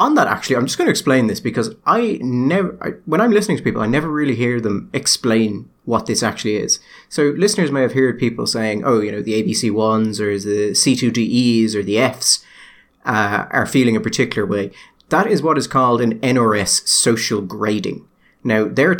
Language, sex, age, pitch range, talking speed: English, male, 30-49, 105-135 Hz, 200 wpm